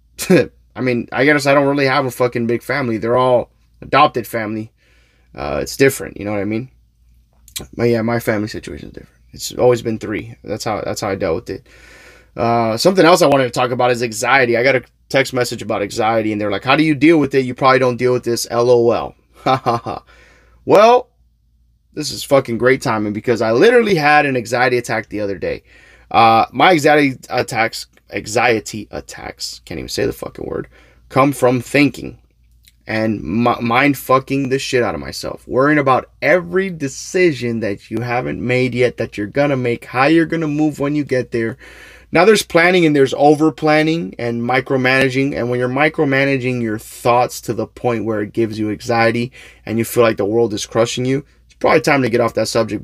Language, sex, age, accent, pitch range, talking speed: English, male, 20-39, American, 115-135 Hz, 200 wpm